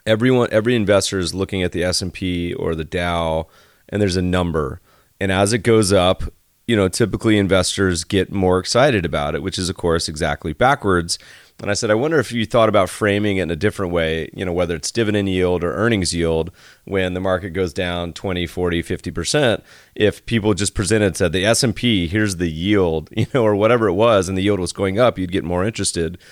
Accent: American